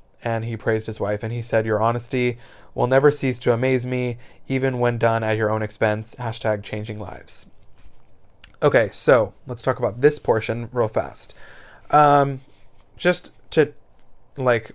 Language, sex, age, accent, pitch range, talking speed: English, male, 20-39, American, 110-135 Hz, 160 wpm